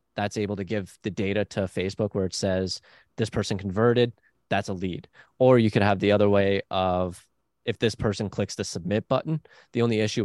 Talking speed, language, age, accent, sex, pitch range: 205 wpm, English, 20-39, American, male, 95-110 Hz